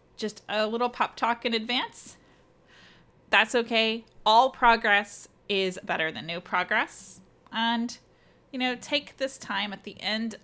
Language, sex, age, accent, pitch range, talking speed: English, female, 20-39, American, 190-250 Hz, 145 wpm